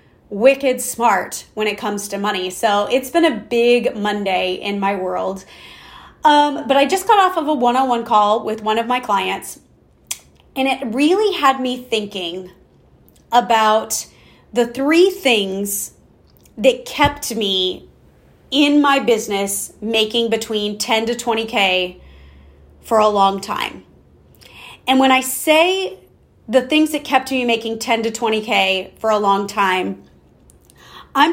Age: 30-49